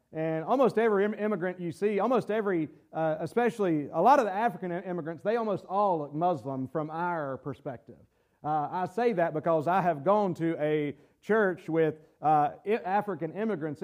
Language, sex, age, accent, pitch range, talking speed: English, male, 40-59, American, 160-215 Hz, 170 wpm